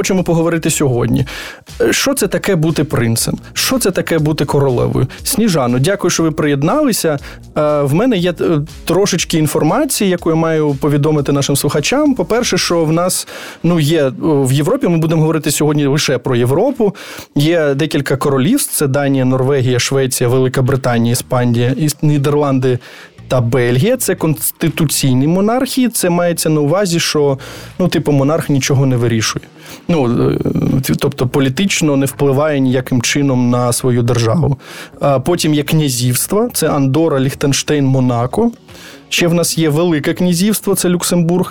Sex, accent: male, native